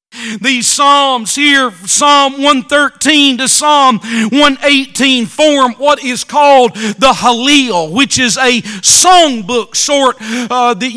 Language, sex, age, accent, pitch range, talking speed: English, male, 40-59, American, 240-280 Hz, 115 wpm